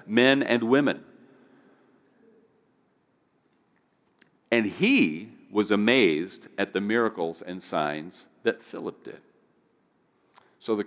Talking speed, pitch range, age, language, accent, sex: 95 wpm, 105-125 Hz, 50-69, English, American, male